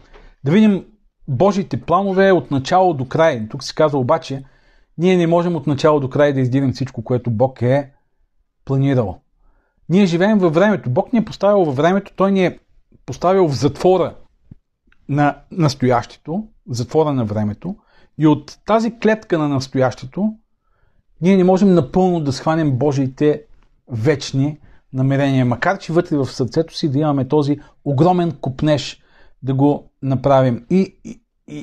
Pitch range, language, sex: 135-185 Hz, Bulgarian, male